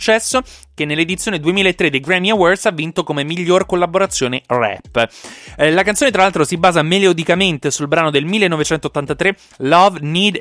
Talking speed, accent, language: 145 wpm, native, Italian